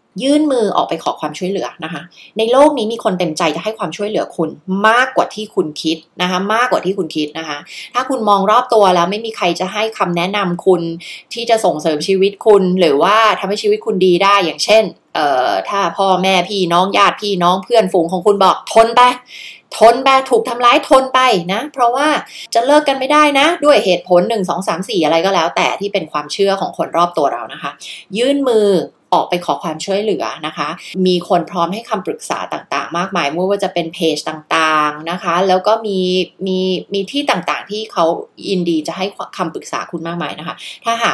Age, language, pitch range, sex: 20-39, Thai, 170-215 Hz, female